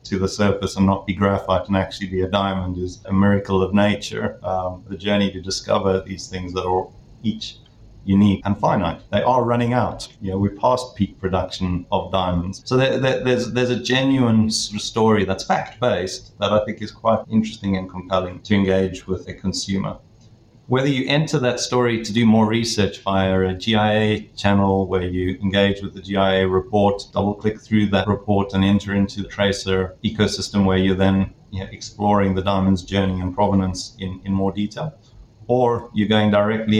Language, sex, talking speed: English, male, 180 wpm